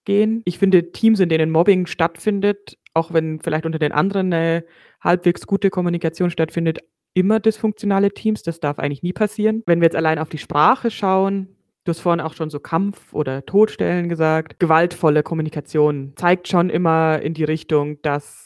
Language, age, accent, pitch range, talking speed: German, 20-39, German, 155-195 Hz, 175 wpm